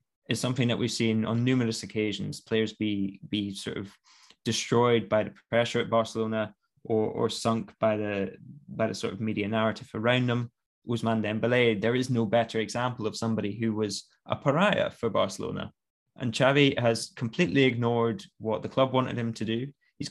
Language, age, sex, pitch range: English, 20-39, male, 110-125 Hz